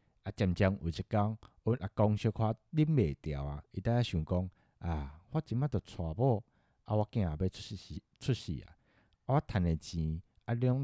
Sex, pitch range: male, 85-115 Hz